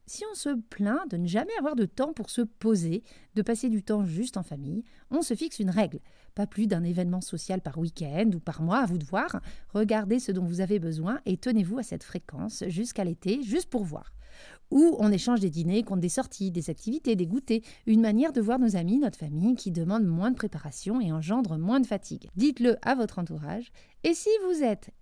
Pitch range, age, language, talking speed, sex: 185-245 Hz, 30-49, French, 225 wpm, female